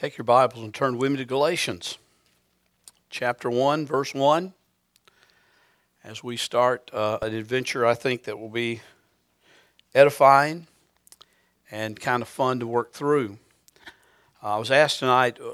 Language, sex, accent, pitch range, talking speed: English, male, American, 115-150 Hz, 145 wpm